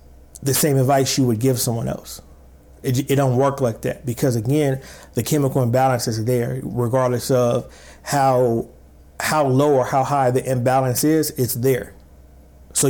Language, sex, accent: English, male, American